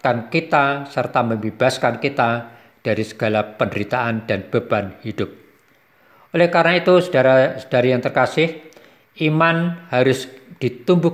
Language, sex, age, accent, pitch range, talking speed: Indonesian, male, 50-69, native, 125-160 Hz, 100 wpm